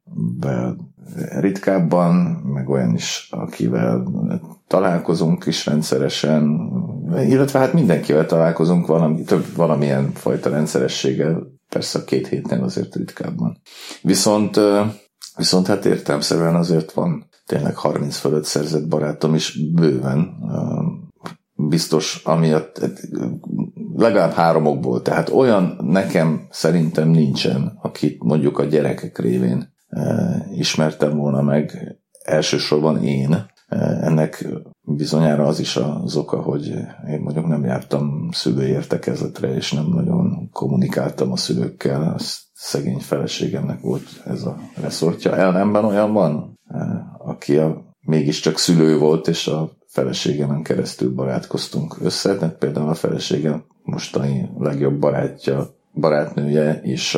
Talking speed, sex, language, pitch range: 105 wpm, male, Hungarian, 75-85 Hz